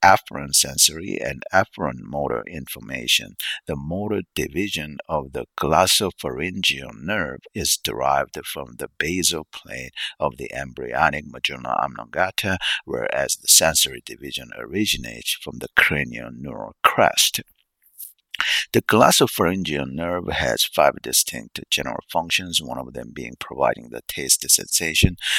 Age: 60-79